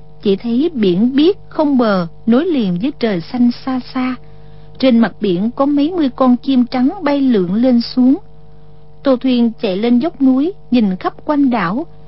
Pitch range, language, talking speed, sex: 190-265 Hz, Vietnamese, 180 wpm, female